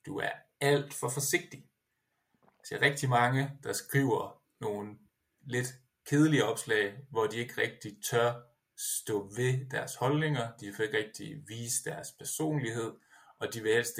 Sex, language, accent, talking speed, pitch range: male, Danish, native, 150 wpm, 120-170 Hz